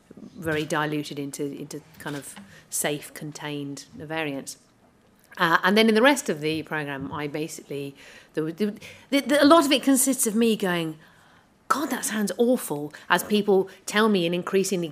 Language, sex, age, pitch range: English, female, 40-59, 150-175 Hz